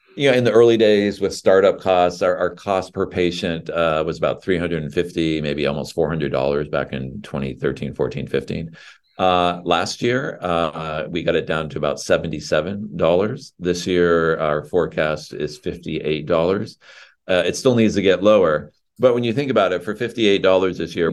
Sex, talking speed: male, 170 wpm